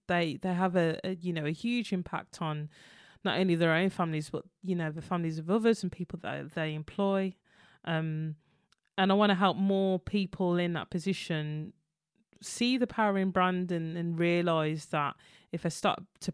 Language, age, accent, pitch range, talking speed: English, 20-39, British, 160-195 Hz, 190 wpm